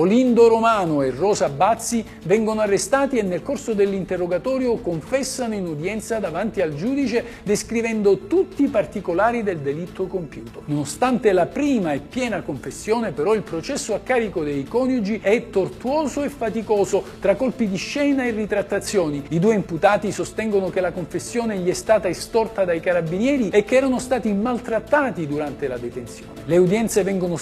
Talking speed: 155 wpm